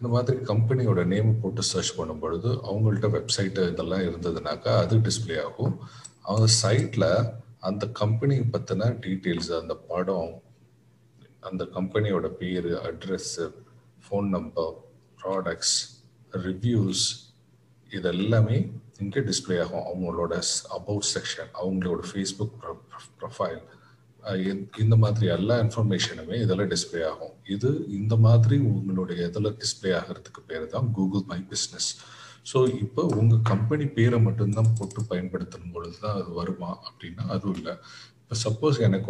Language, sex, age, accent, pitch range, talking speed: Tamil, male, 40-59, native, 95-115 Hz, 85 wpm